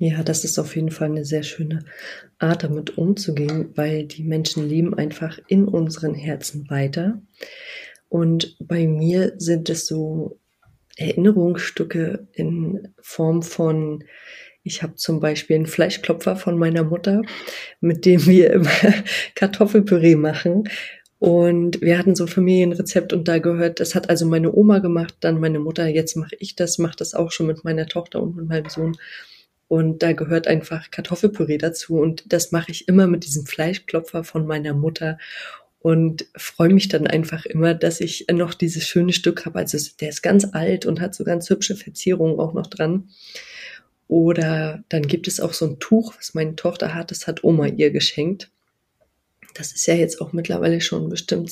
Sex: female